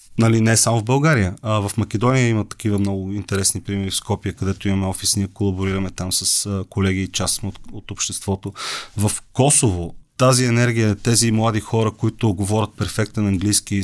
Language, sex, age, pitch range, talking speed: Bulgarian, male, 30-49, 100-120 Hz, 165 wpm